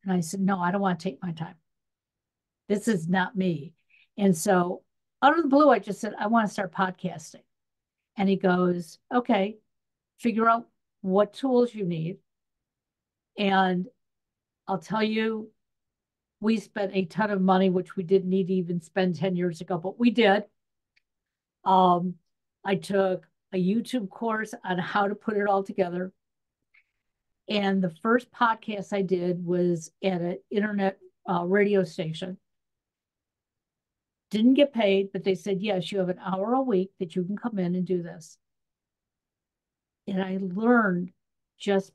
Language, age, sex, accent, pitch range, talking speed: English, 50-69, female, American, 180-205 Hz, 160 wpm